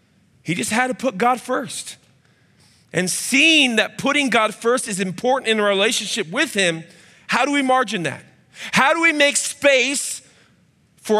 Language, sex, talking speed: English, male, 165 wpm